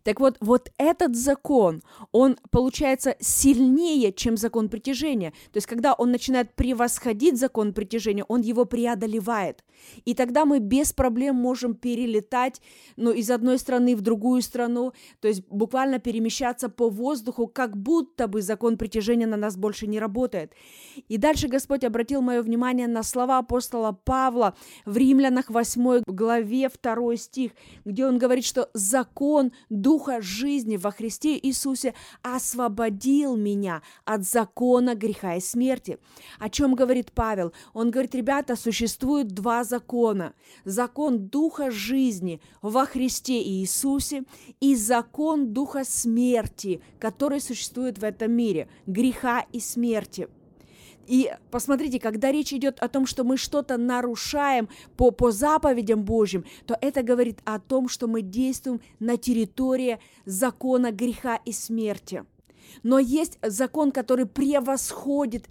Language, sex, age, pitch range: Russian, female, 20-39, 225-265 Hz